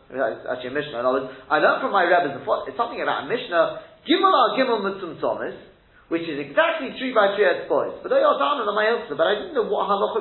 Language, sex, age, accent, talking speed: English, male, 30-49, British, 210 wpm